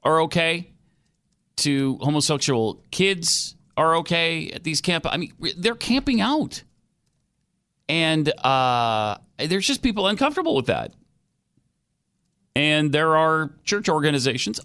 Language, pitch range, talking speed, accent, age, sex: English, 120-175 Hz, 115 wpm, American, 40-59, male